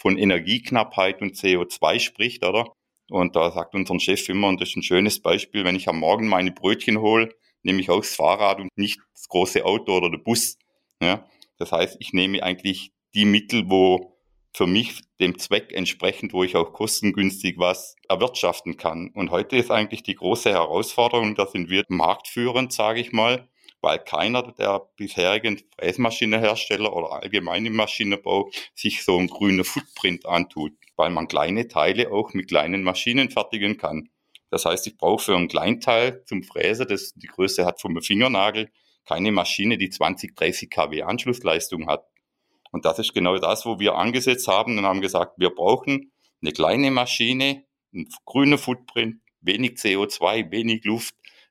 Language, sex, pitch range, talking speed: German, male, 95-115 Hz, 165 wpm